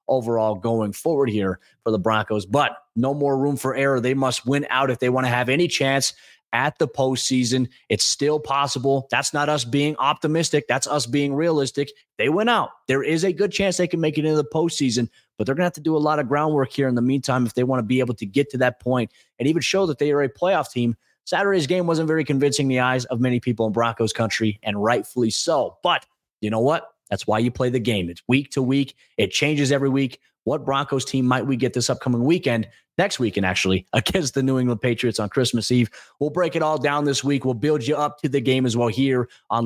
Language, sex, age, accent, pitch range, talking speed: English, male, 30-49, American, 125-150 Hz, 245 wpm